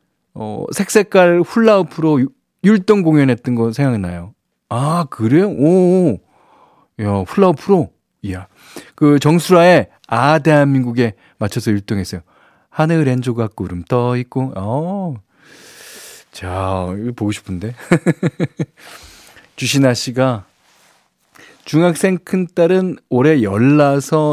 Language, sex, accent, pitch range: Korean, male, native, 105-160 Hz